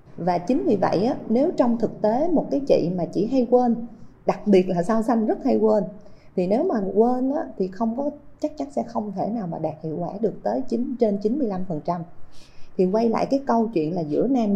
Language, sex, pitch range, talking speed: Vietnamese, female, 170-230 Hz, 240 wpm